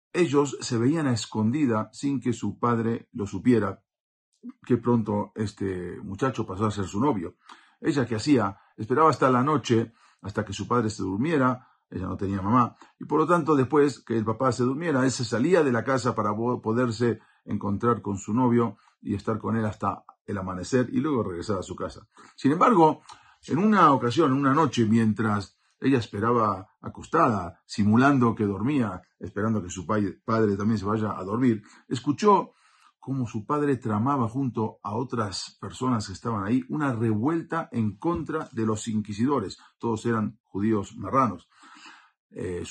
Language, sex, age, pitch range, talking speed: Spanish, male, 50-69, 105-130 Hz, 170 wpm